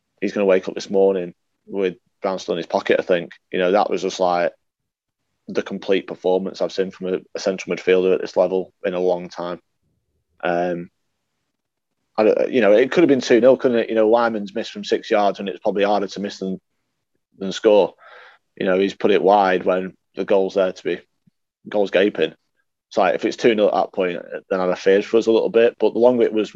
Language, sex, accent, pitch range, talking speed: English, male, British, 95-105 Hz, 235 wpm